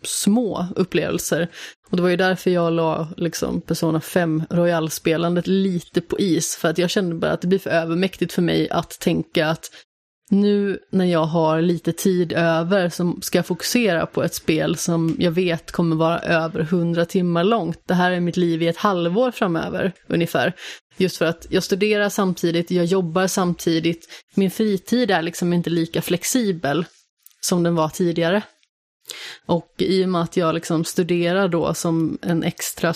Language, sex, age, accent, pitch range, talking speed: Swedish, female, 30-49, native, 170-185 Hz, 170 wpm